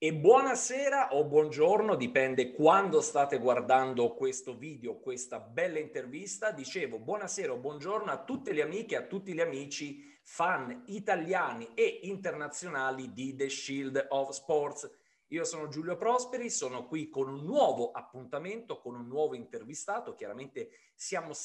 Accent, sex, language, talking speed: native, male, Italian, 145 wpm